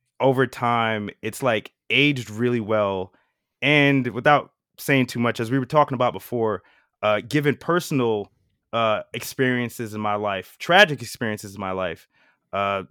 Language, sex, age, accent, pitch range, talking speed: English, male, 20-39, American, 110-145 Hz, 150 wpm